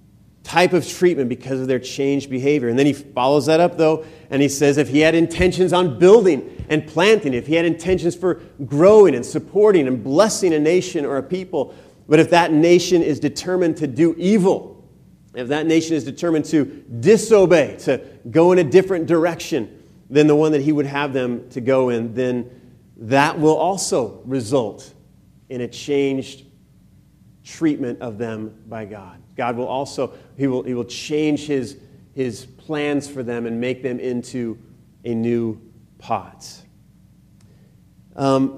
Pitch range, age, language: 125-170 Hz, 40-59, English